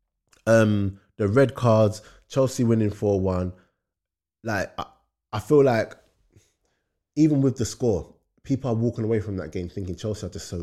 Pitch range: 85-110 Hz